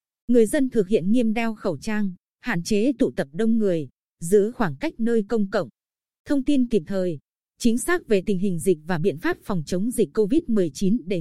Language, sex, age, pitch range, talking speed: Vietnamese, female, 20-39, 185-235 Hz, 205 wpm